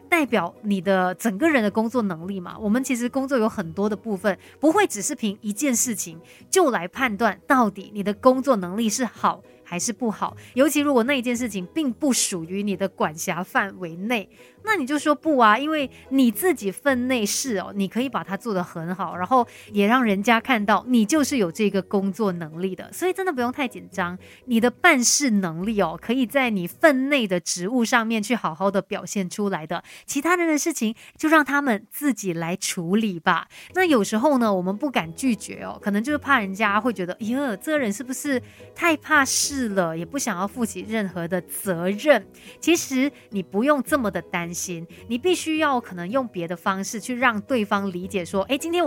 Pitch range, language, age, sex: 195-270 Hz, Chinese, 30-49, female